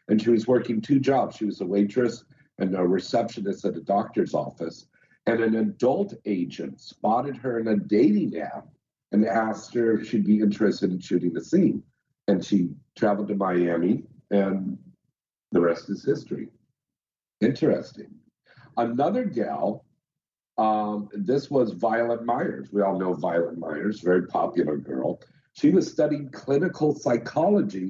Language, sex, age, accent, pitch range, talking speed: English, male, 50-69, American, 100-125 Hz, 150 wpm